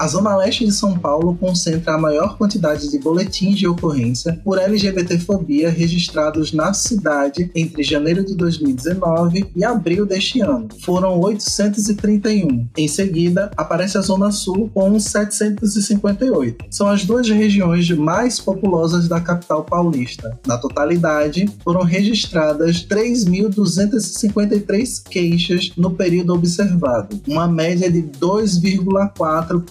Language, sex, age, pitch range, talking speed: Portuguese, male, 20-39, 160-205 Hz, 120 wpm